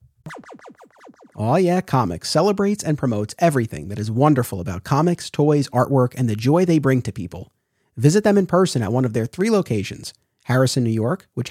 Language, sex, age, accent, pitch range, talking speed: English, male, 30-49, American, 120-160 Hz, 180 wpm